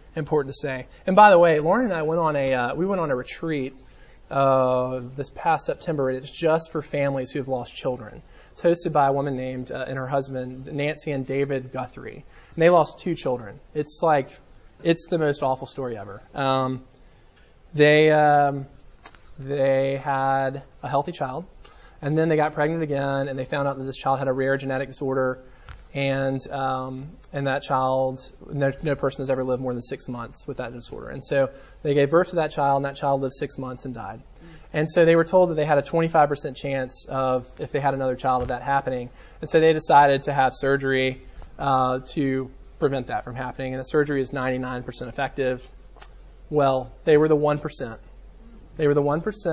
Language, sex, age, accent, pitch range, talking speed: English, male, 20-39, American, 130-150 Hz, 200 wpm